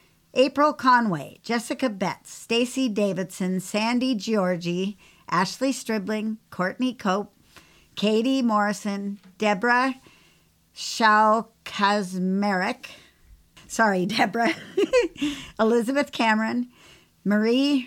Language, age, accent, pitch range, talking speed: English, 50-69, American, 195-240 Hz, 70 wpm